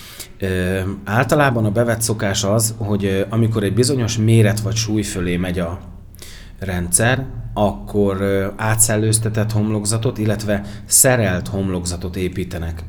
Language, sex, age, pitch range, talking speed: Hungarian, male, 30-49, 95-115 Hz, 105 wpm